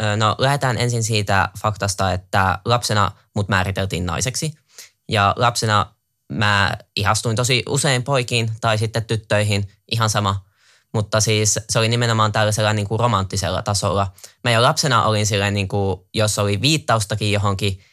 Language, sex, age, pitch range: Finnish, male, 20-39, 100-110 Hz